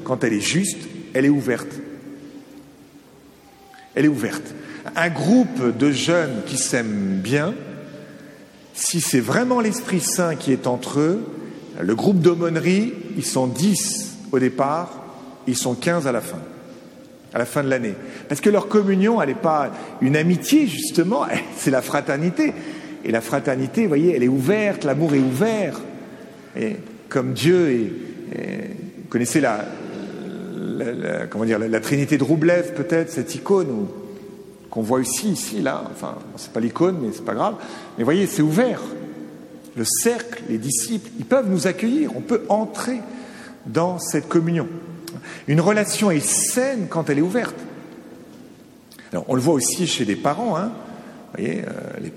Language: French